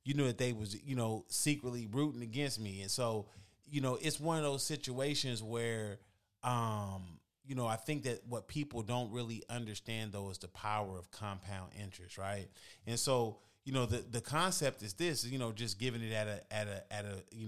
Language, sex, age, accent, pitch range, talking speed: English, male, 30-49, American, 100-125 Hz, 210 wpm